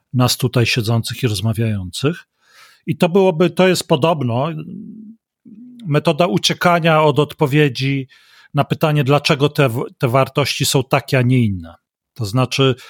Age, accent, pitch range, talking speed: 40-59, native, 130-170 Hz, 130 wpm